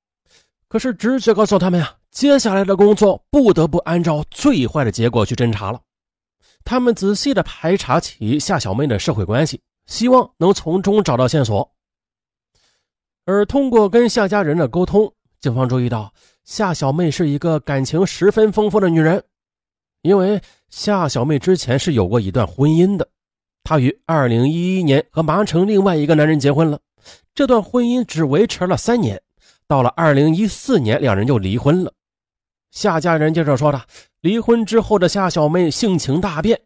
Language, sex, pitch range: Chinese, male, 135-205 Hz